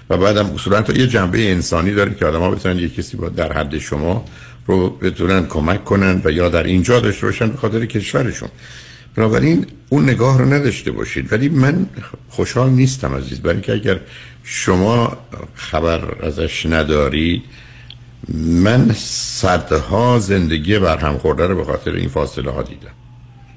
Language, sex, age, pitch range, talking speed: Persian, male, 60-79, 80-115 Hz, 160 wpm